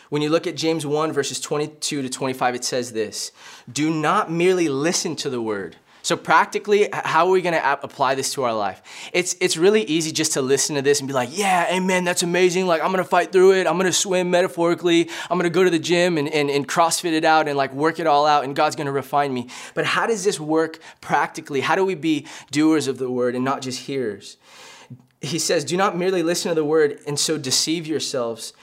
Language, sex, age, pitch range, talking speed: English, male, 20-39, 140-180 Hz, 245 wpm